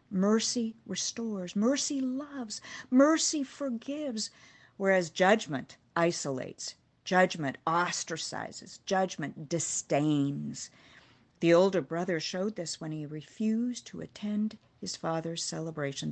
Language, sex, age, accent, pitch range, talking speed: English, female, 50-69, American, 155-225 Hz, 95 wpm